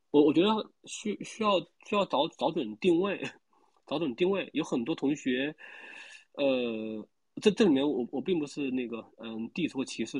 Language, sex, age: Chinese, male, 20-39